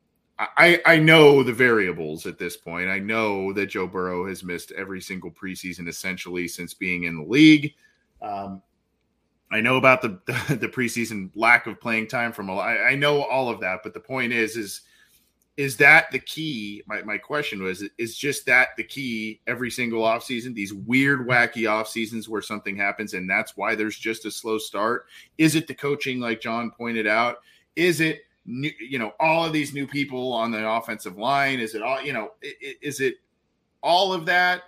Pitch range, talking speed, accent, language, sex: 105-140 Hz, 195 wpm, American, English, male